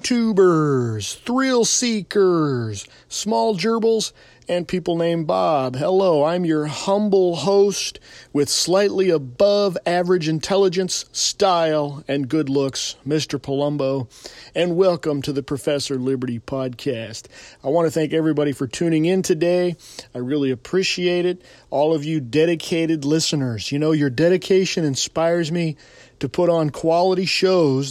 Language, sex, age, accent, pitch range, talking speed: English, male, 40-59, American, 145-190 Hz, 130 wpm